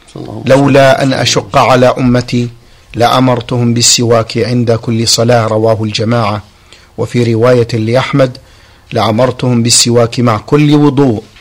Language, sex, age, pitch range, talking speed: Arabic, male, 50-69, 115-130 Hz, 105 wpm